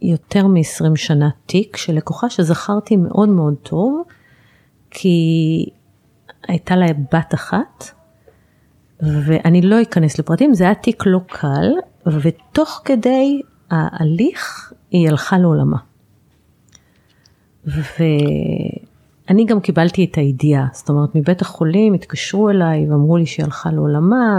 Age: 30-49